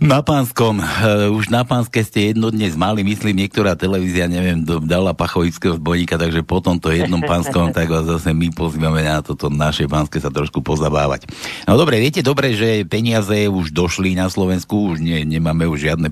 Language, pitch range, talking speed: Slovak, 80-105 Hz, 175 wpm